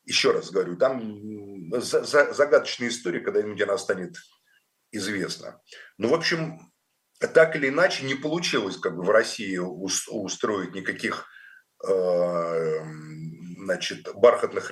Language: Russian